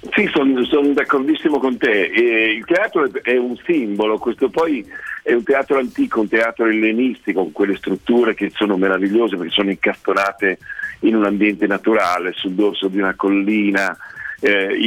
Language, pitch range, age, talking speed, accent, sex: Italian, 100-130 Hz, 50-69, 160 wpm, native, male